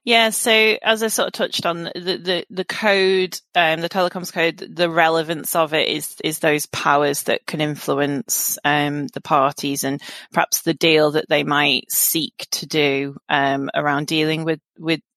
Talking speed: 180 wpm